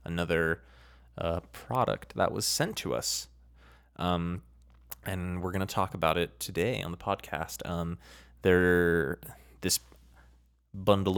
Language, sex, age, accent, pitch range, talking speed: English, male, 20-39, American, 80-95 Hz, 125 wpm